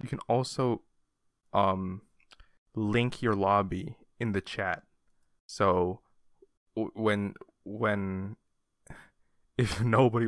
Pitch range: 95-130 Hz